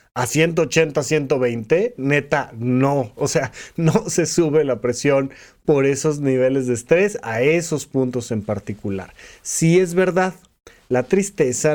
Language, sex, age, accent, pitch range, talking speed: Spanish, male, 30-49, Mexican, 125-165 Hz, 140 wpm